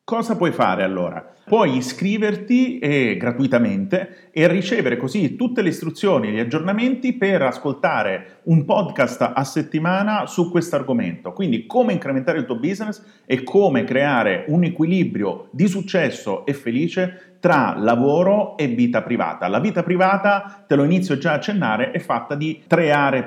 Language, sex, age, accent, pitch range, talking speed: Italian, male, 40-59, native, 135-205 Hz, 150 wpm